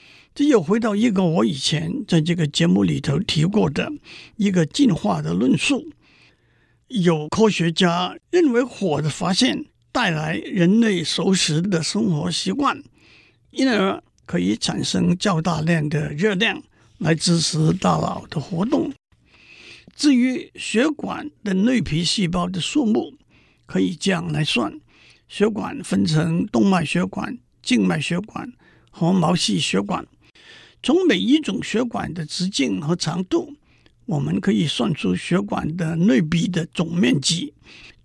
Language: Chinese